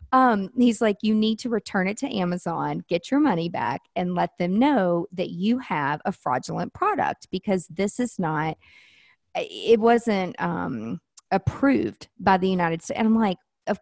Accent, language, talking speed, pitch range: American, English, 175 wpm, 175-230 Hz